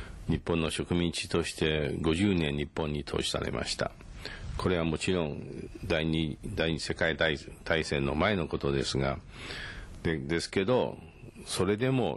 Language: Japanese